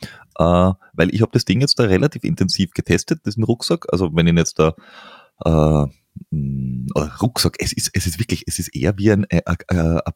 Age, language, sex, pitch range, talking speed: 30-49, German, male, 80-110 Hz, 195 wpm